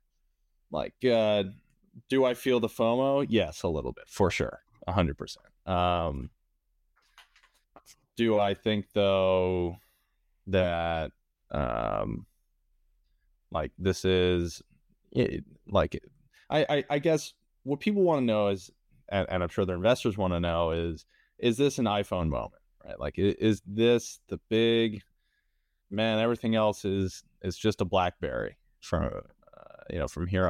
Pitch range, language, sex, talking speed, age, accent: 85-115 Hz, English, male, 140 wpm, 20-39, American